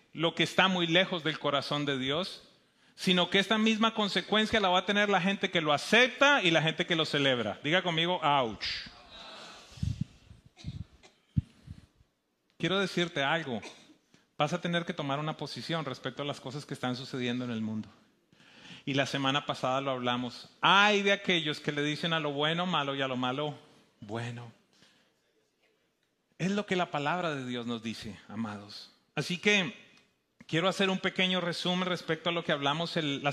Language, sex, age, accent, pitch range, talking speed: English, male, 30-49, Mexican, 145-185 Hz, 175 wpm